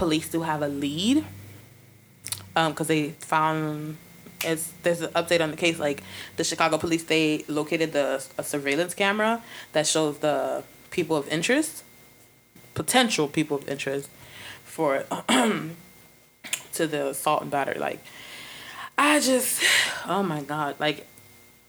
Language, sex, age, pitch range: English, female, 20-39, 135-165 Hz